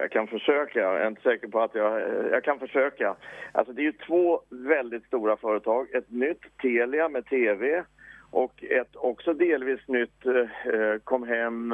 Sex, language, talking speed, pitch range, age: male, English, 175 wpm, 115-155 Hz, 50-69